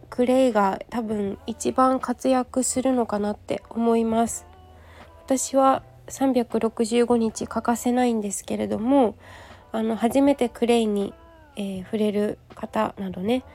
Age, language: 20-39, Japanese